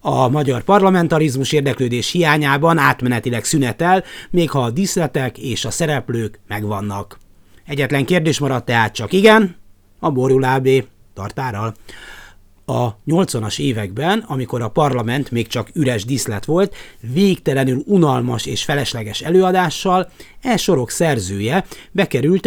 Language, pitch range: Hungarian, 115-160 Hz